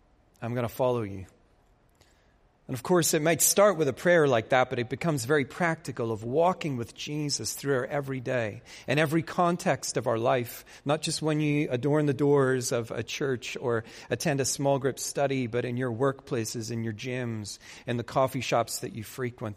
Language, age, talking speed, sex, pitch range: English, 40-59, 200 wpm, male, 115-155 Hz